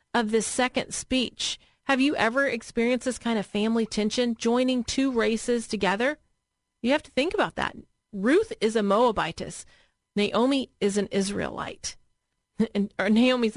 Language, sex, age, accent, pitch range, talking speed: English, female, 40-59, American, 200-255 Hz, 145 wpm